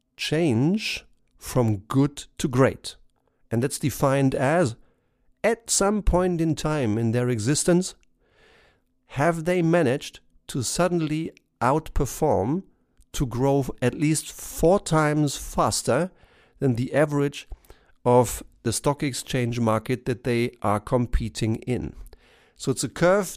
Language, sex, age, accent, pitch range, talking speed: German, male, 50-69, German, 125-170 Hz, 120 wpm